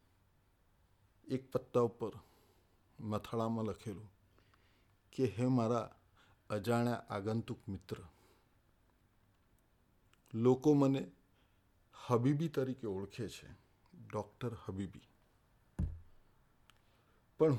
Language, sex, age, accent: Gujarati, male, 50-69, native